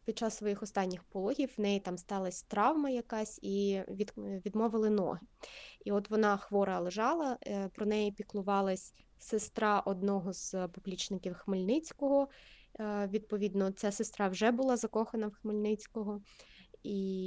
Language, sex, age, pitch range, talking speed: Ukrainian, female, 20-39, 185-215 Hz, 130 wpm